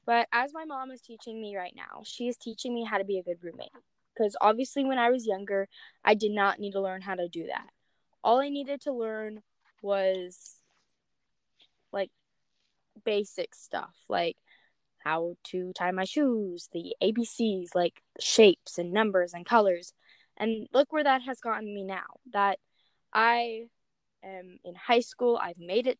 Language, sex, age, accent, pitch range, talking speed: English, female, 10-29, American, 200-245 Hz, 175 wpm